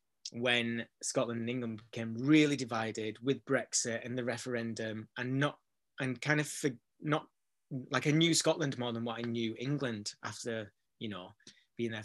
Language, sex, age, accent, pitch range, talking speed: English, male, 30-49, British, 110-130 Hz, 165 wpm